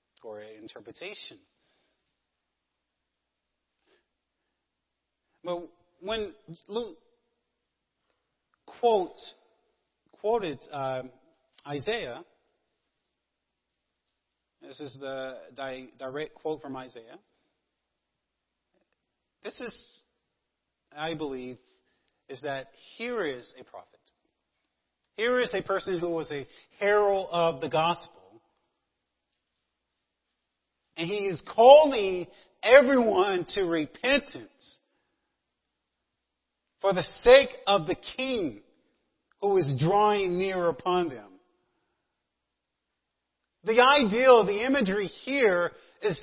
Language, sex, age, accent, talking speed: English, male, 40-59, American, 85 wpm